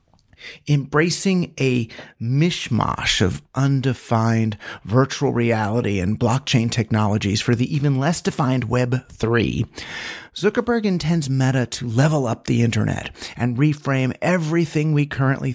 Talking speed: 115 wpm